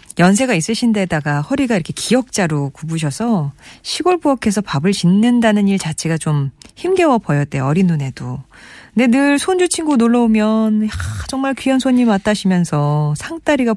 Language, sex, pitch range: Korean, female, 150-215 Hz